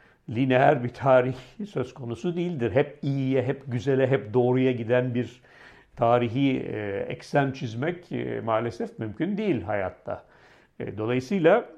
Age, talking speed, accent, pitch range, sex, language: 60-79, 110 wpm, native, 105-135 Hz, male, Turkish